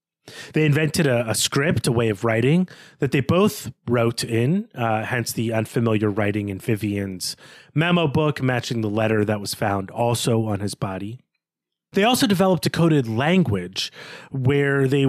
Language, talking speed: English, 165 wpm